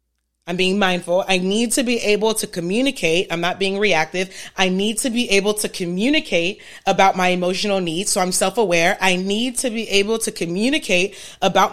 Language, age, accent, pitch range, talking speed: English, 30-49, American, 155-215 Hz, 185 wpm